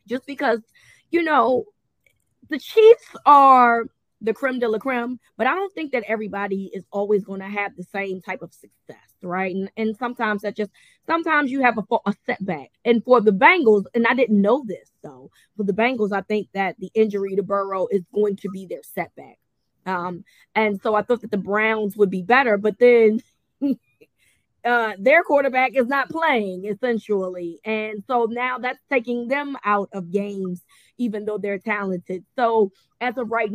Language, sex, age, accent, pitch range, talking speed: English, female, 20-39, American, 200-245 Hz, 190 wpm